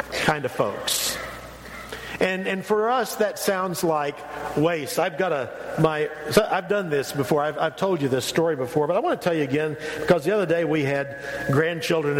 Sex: male